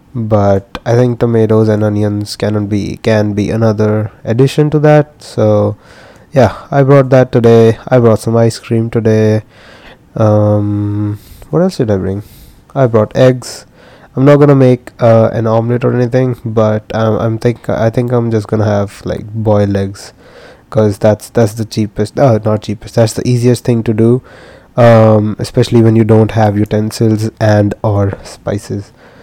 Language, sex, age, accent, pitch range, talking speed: English, male, 20-39, Indian, 105-125 Hz, 170 wpm